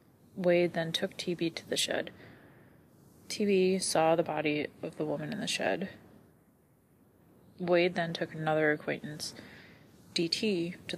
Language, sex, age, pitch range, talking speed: English, female, 20-39, 160-185 Hz, 130 wpm